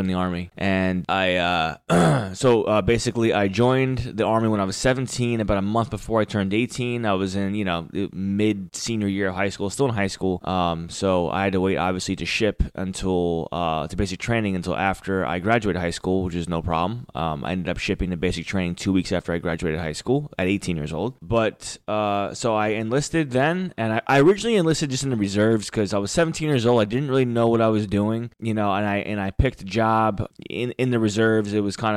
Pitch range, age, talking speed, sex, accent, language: 95-115 Hz, 20-39, 240 wpm, male, American, English